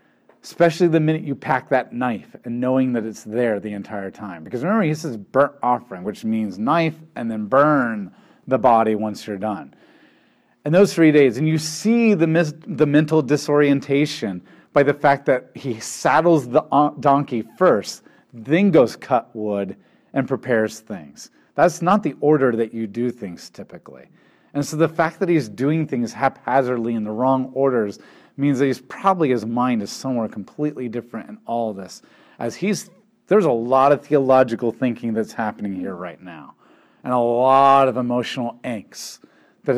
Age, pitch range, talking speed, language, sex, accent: 40-59, 120-160 Hz, 170 wpm, English, male, American